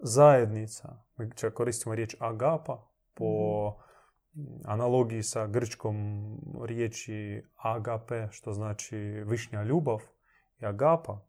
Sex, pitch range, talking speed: male, 110-140 Hz, 90 wpm